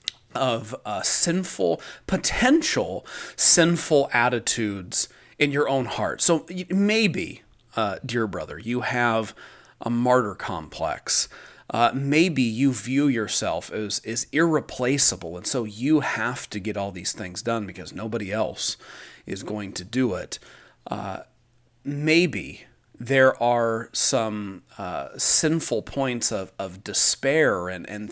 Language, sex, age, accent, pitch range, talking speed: English, male, 30-49, American, 105-135 Hz, 125 wpm